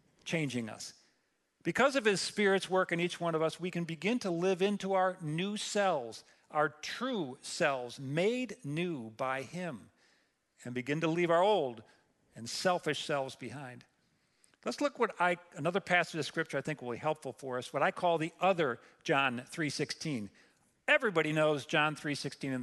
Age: 50-69